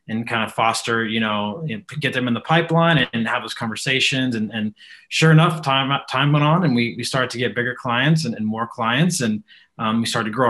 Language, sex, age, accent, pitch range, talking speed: English, male, 20-39, American, 115-135 Hz, 235 wpm